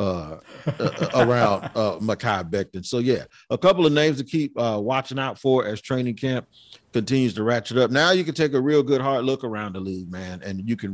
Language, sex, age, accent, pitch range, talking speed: English, male, 40-59, American, 105-135 Hz, 225 wpm